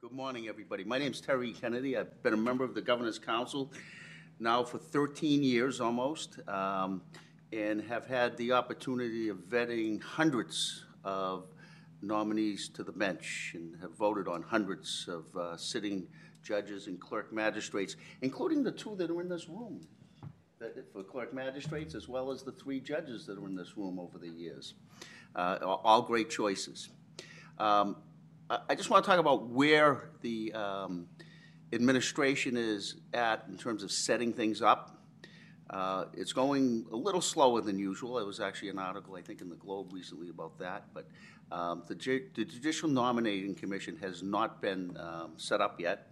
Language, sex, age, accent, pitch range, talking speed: English, male, 50-69, American, 95-135 Hz, 170 wpm